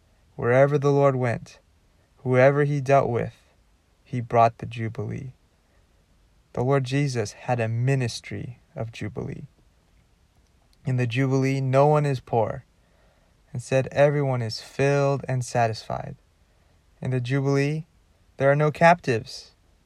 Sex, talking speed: male, 125 wpm